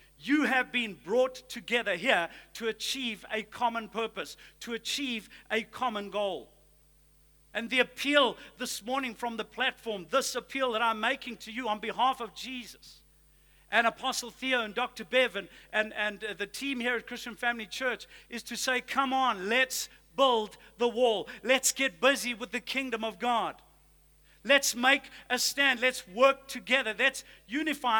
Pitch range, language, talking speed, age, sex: 230-265 Hz, English, 165 wpm, 50-69, male